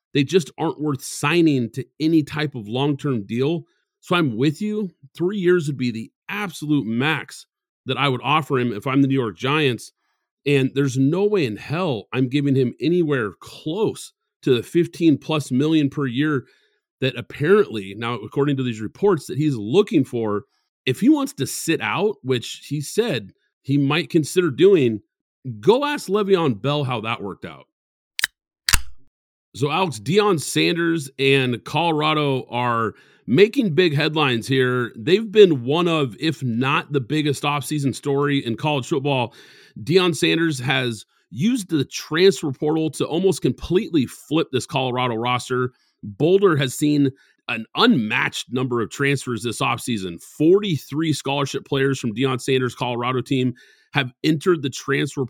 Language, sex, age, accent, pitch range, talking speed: English, male, 40-59, American, 125-160 Hz, 155 wpm